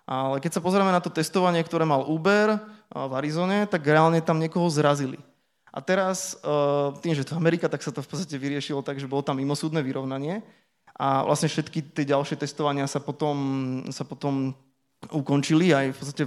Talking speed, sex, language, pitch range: 180 wpm, male, English, 140-160 Hz